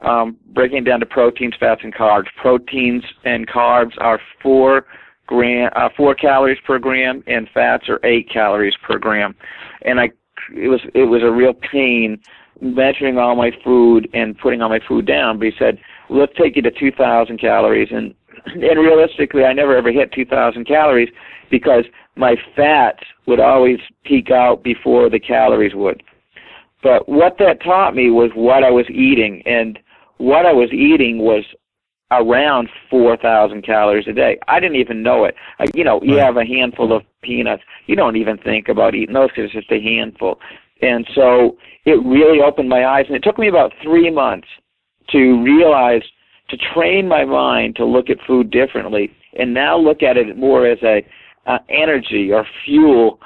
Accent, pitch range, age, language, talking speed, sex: American, 115-135 Hz, 50-69, English, 180 wpm, male